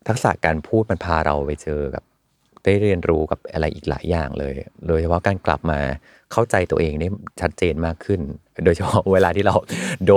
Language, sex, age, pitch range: Thai, male, 30-49, 80-105 Hz